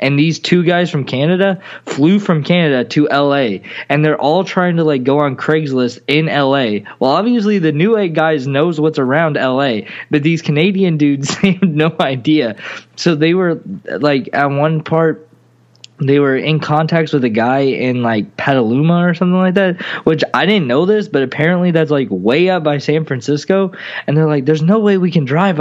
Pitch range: 140-180 Hz